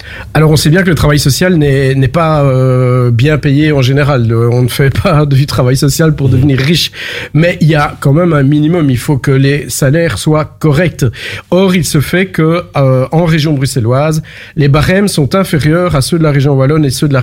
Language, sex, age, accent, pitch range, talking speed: French, male, 50-69, French, 130-170 Hz, 225 wpm